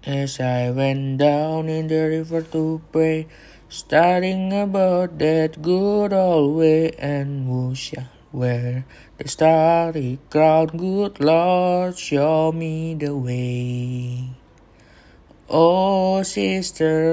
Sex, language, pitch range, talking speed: male, Indonesian, 140-180 Hz, 100 wpm